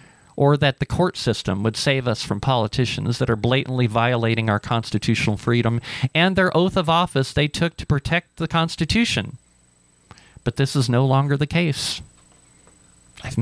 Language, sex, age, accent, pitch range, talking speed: English, male, 40-59, American, 110-145 Hz, 160 wpm